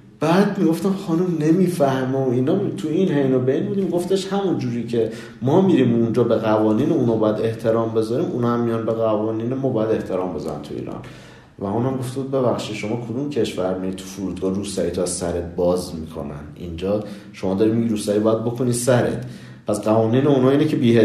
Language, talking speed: Persian, 170 wpm